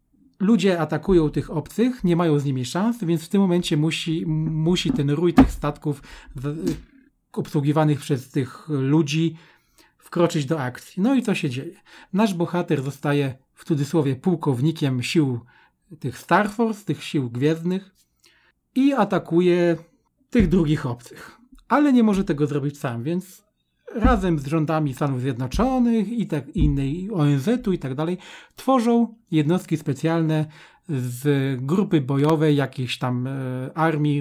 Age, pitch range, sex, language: 40-59, 145-190 Hz, male, Polish